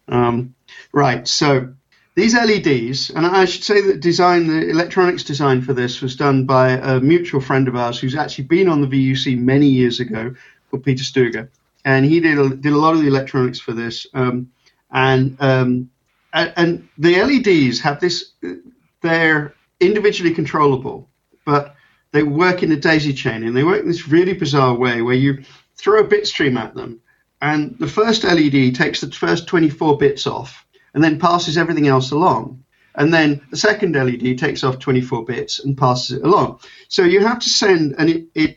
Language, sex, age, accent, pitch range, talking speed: English, male, 40-59, British, 130-175 Hz, 185 wpm